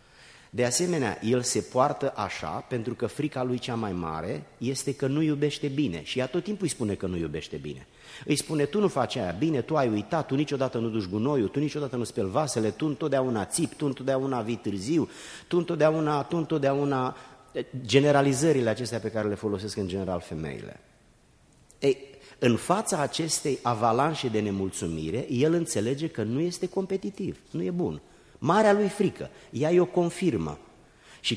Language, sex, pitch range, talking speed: Romanian, male, 110-150 Hz, 170 wpm